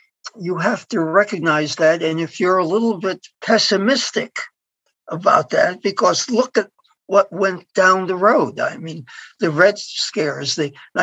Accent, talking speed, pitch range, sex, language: American, 165 wpm, 170-220 Hz, male, English